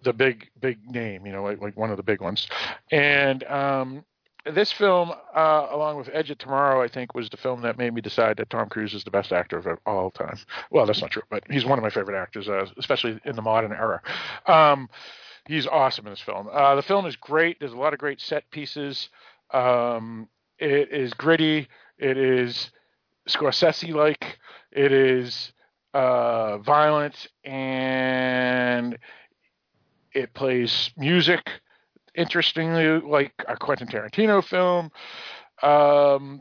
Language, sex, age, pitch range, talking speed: English, male, 40-59, 125-155 Hz, 165 wpm